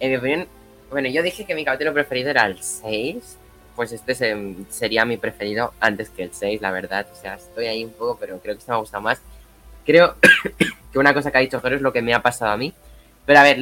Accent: Spanish